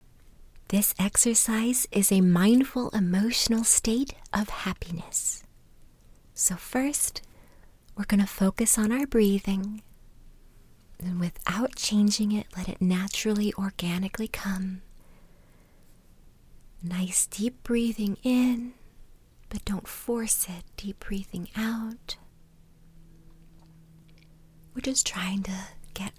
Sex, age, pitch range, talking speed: female, 30-49, 180-220 Hz, 95 wpm